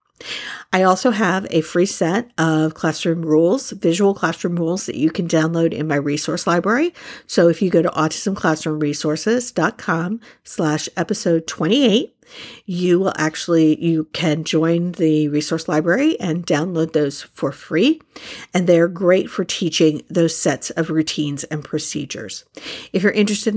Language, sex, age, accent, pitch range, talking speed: English, female, 50-69, American, 155-185 Hz, 145 wpm